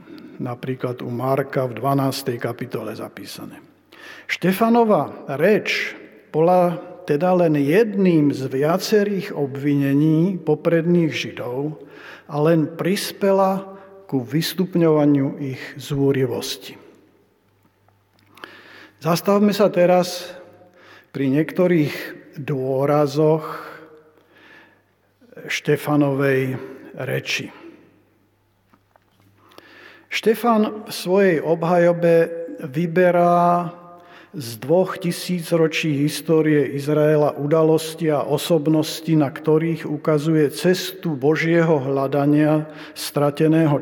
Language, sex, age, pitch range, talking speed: Slovak, male, 50-69, 140-170 Hz, 75 wpm